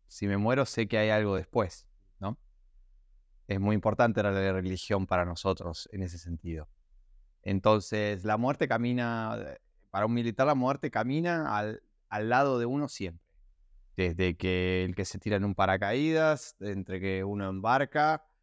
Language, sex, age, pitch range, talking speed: Spanish, male, 20-39, 95-125 Hz, 155 wpm